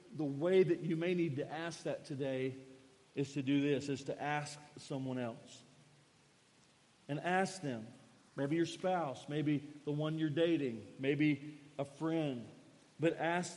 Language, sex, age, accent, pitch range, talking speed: English, male, 40-59, American, 140-175 Hz, 155 wpm